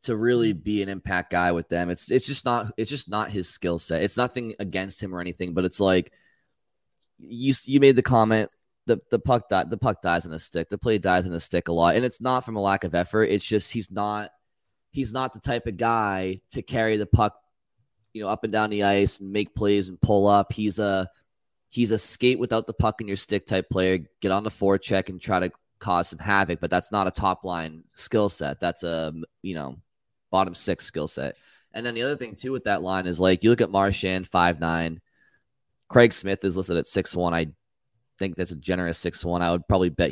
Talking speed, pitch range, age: 240 wpm, 90-110 Hz, 20-39